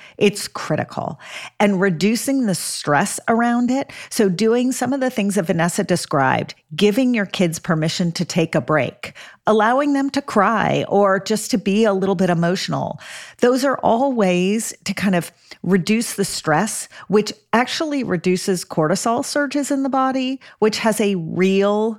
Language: English